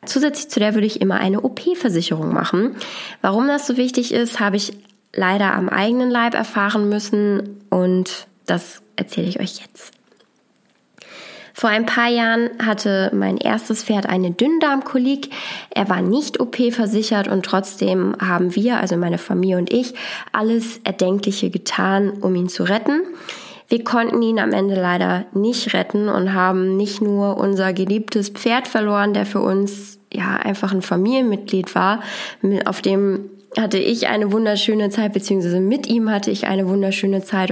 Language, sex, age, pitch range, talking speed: German, female, 20-39, 190-230 Hz, 155 wpm